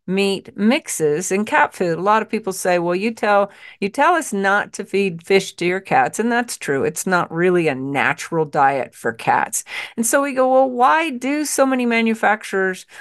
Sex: female